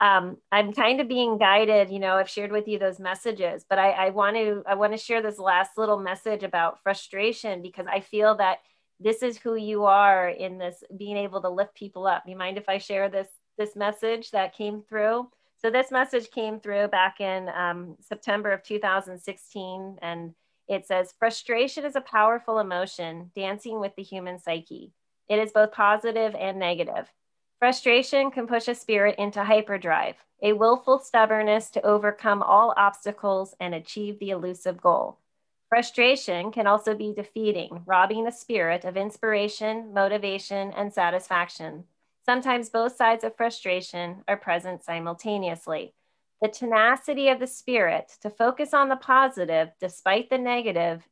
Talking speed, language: 165 wpm, English